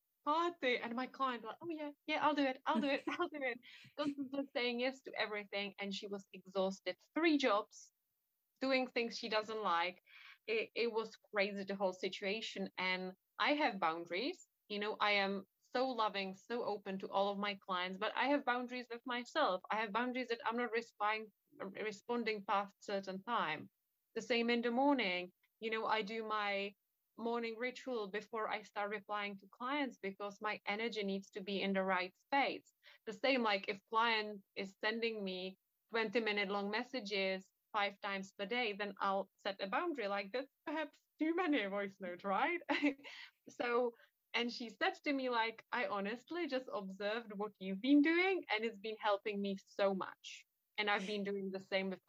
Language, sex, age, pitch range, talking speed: English, female, 20-39, 200-255 Hz, 180 wpm